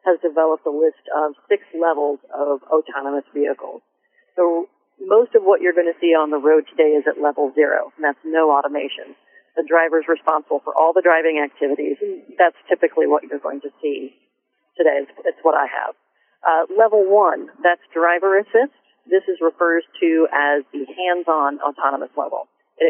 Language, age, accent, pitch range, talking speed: English, 40-59, American, 155-195 Hz, 175 wpm